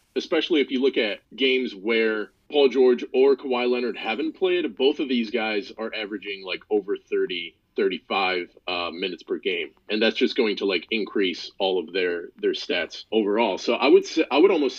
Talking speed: 185 wpm